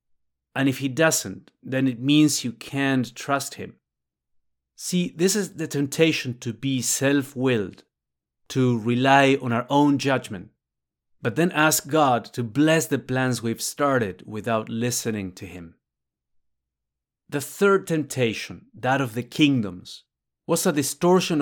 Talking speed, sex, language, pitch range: 135 wpm, male, English, 105-145 Hz